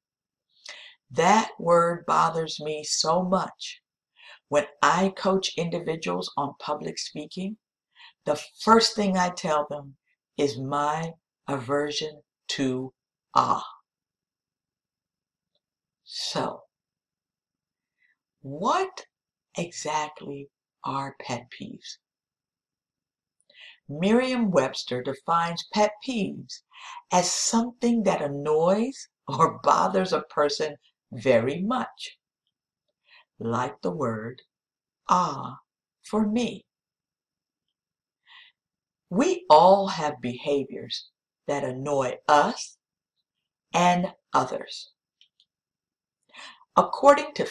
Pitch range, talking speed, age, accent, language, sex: 145-215 Hz, 75 wpm, 60-79, American, English, female